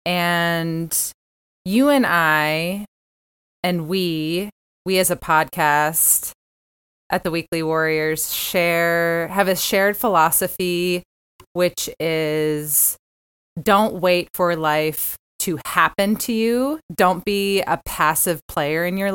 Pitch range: 155-185 Hz